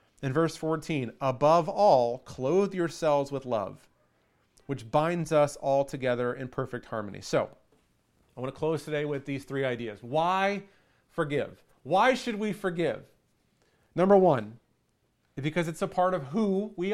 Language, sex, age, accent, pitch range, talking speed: English, male, 40-59, American, 145-190 Hz, 150 wpm